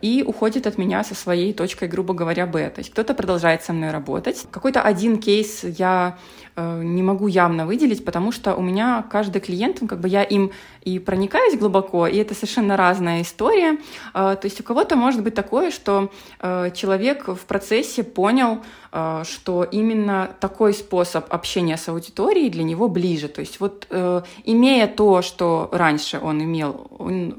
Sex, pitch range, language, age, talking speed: female, 175-225 Hz, Russian, 20-39, 175 wpm